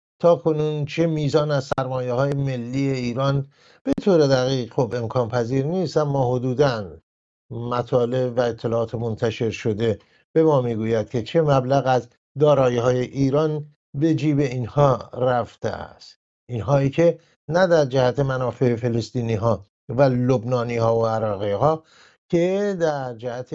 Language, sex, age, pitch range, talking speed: English, male, 50-69, 120-155 Hz, 140 wpm